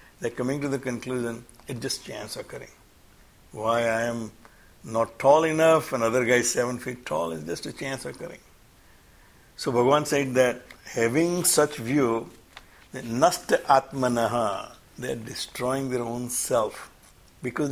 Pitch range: 115-140 Hz